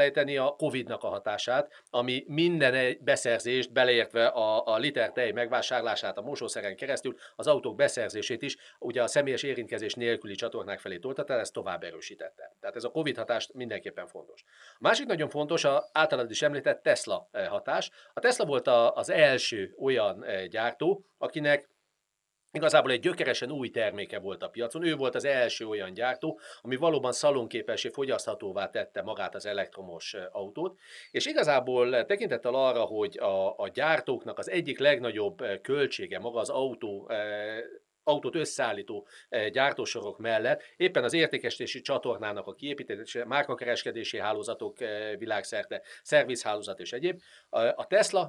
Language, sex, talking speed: Hungarian, male, 145 wpm